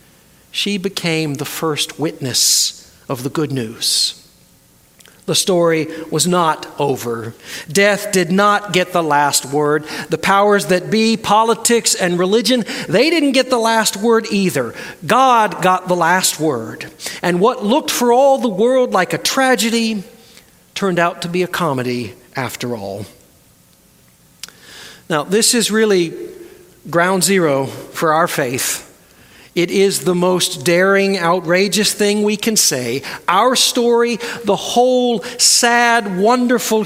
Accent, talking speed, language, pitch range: American, 135 wpm, English, 165-235 Hz